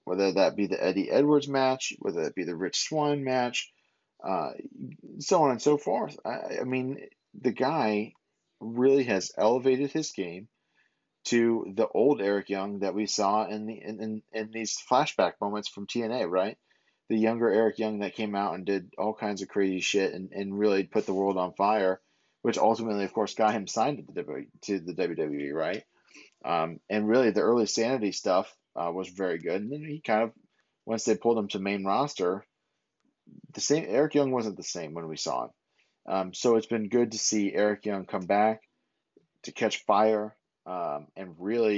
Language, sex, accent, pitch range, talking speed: English, male, American, 95-115 Hz, 195 wpm